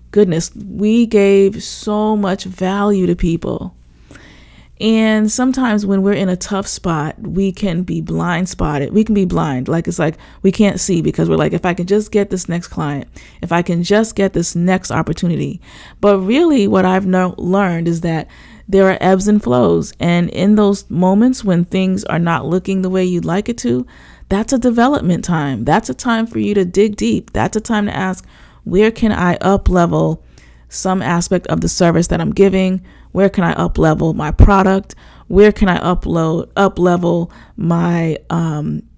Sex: female